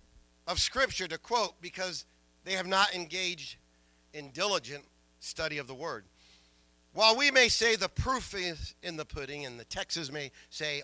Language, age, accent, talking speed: English, 50-69, American, 165 wpm